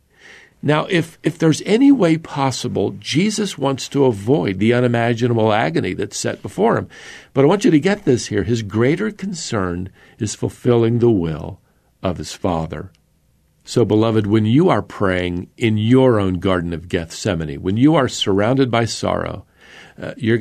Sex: male